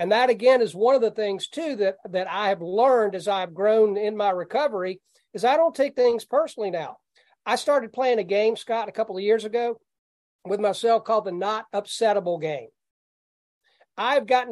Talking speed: 195 wpm